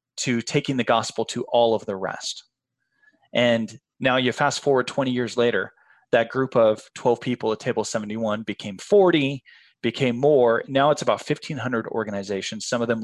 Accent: American